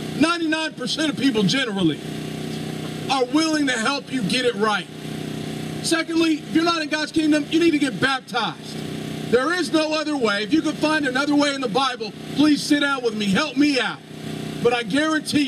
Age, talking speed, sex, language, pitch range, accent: 40-59, 190 wpm, male, English, 195-280 Hz, American